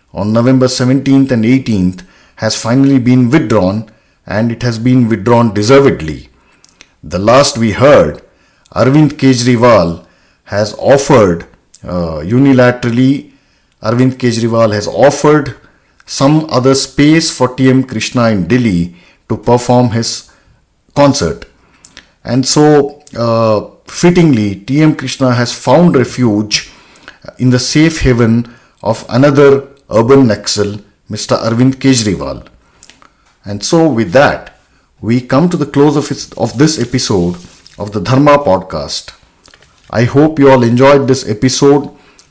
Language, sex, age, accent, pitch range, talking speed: English, male, 50-69, Indian, 110-140 Hz, 120 wpm